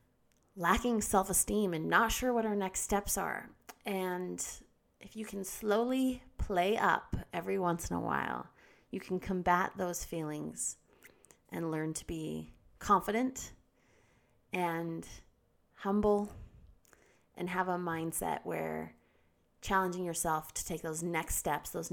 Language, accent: English, American